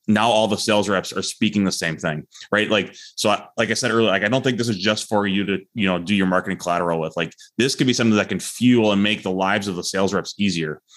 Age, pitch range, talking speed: 20-39, 95-110 Hz, 285 wpm